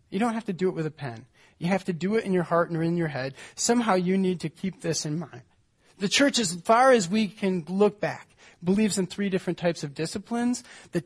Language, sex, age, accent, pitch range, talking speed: English, male, 30-49, American, 165-205 Hz, 250 wpm